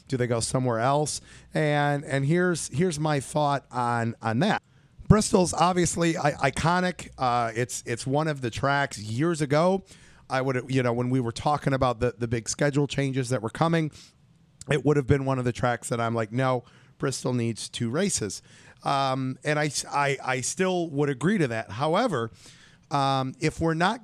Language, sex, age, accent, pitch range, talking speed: English, male, 40-59, American, 125-155 Hz, 185 wpm